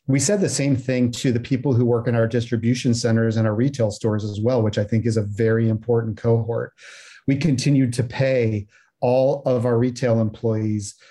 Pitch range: 115-135 Hz